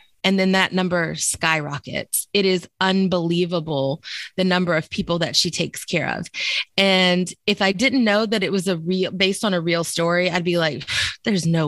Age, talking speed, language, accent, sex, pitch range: 20-39, 190 wpm, English, American, female, 180-215 Hz